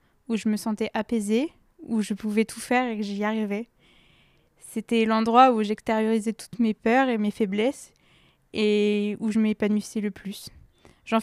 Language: French